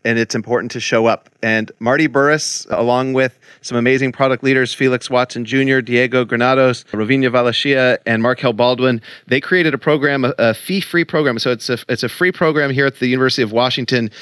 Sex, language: male, English